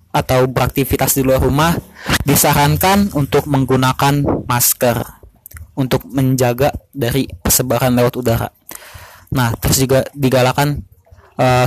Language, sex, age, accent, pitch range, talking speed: Indonesian, male, 20-39, native, 120-145 Hz, 105 wpm